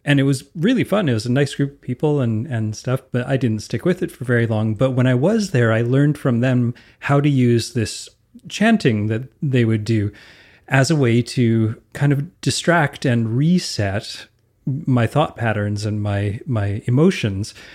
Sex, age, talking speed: male, 30-49, 195 wpm